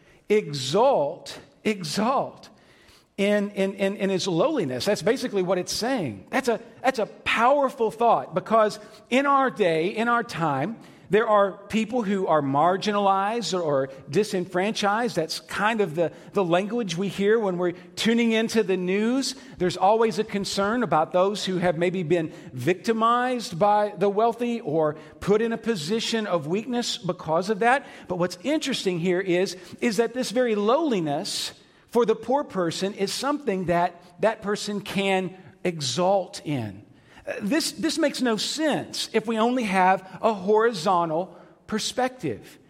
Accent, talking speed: American, 150 wpm